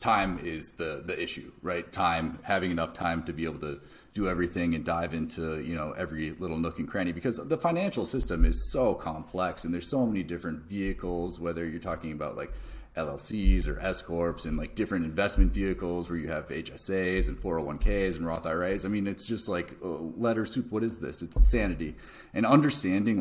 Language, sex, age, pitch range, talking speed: English, male, 30-49, 80-100 Hz, 195 wpm